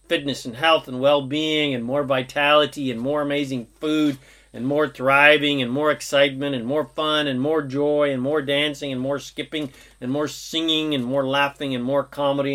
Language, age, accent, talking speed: English, 40-59, American, 185 wpm